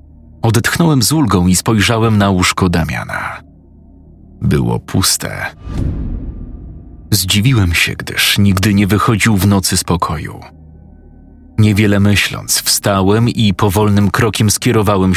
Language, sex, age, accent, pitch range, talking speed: Polish, male, 30-49, native, 85-115 Hz, 105 wpm